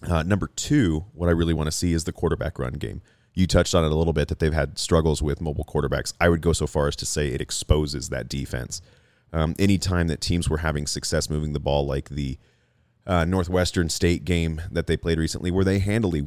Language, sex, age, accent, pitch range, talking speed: English, male, 30-49, American, 75-90 Hz, 230 wpm